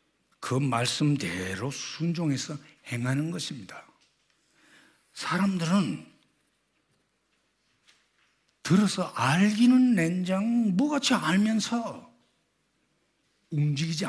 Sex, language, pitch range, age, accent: male, Korean, 105-180 Hz, 60-79, native